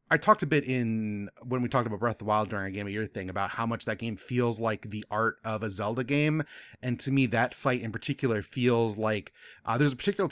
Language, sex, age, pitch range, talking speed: English, male, 30-49, 110-135 Hz, 270 wpm